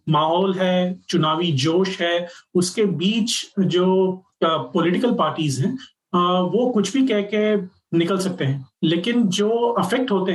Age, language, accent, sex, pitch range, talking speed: 30-49, Hindi, native, male, 160-195 Hz, 135 wpm